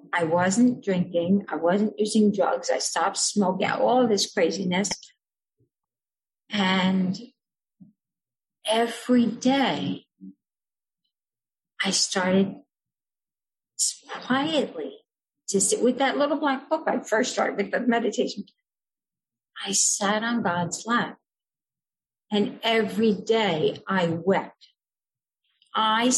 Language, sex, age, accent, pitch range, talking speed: English, female, 50-69, American, 185-230 Hz, 100 wpm